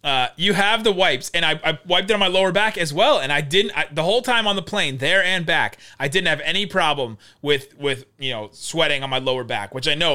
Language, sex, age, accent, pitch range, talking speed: English, male, 30-49, American, 150-195 Hz, 270 wpm